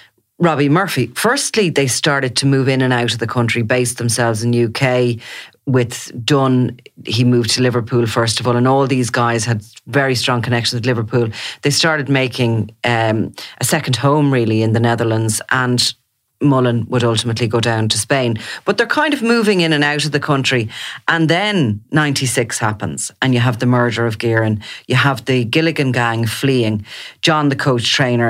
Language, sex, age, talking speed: English, female, 30-49, 185 wpm